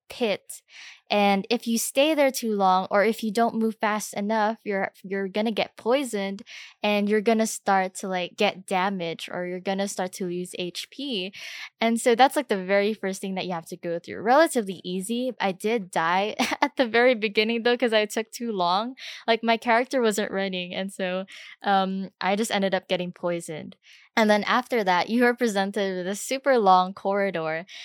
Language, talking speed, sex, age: English, 195 wpm, female, 10-29